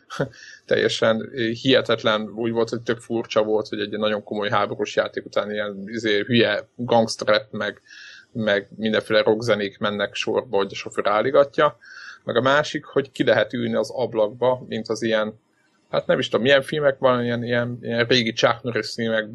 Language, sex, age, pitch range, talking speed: Hungarian, male, 20-39, 110-125 Hz, 165 wpm